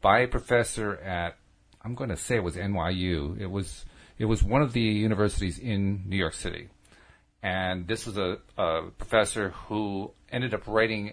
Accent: American